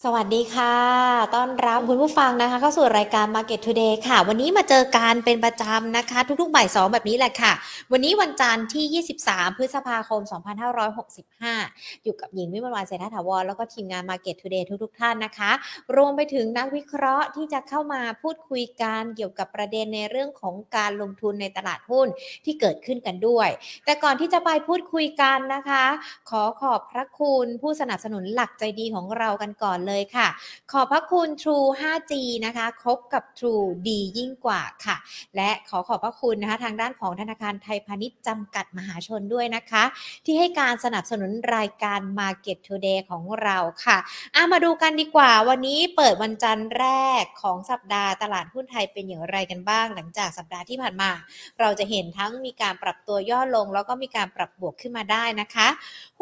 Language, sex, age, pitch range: Thai, female, 20-39, 210-265 Hz